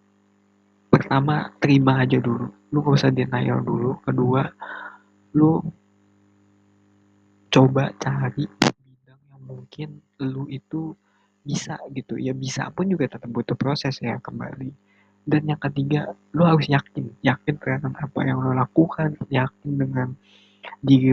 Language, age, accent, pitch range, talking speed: Indonesian, 20-39, native, 115-145 Hz, 125 wpm